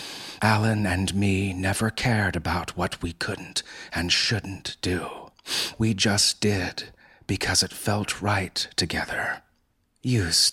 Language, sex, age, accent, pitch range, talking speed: English, male, 30-49, American, 90-110 Hz, 120 wpm